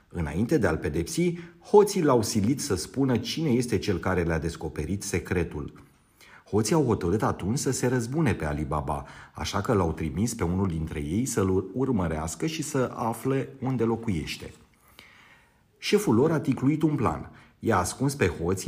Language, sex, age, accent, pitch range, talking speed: Romanian, male, 30-49, native, 90-140 Hz, 160 wpm